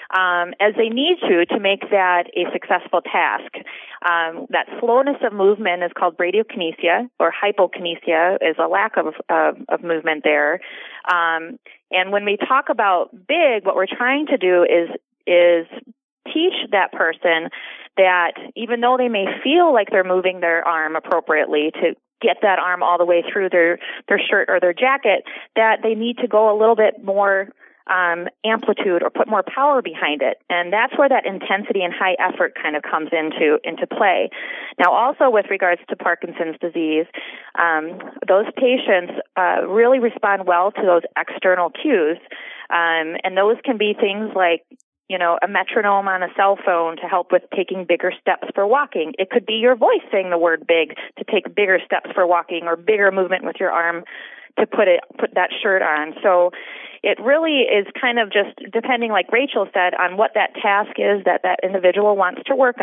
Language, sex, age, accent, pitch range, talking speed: English, female, 30-49, American, 175-235 Hz, 185 wpm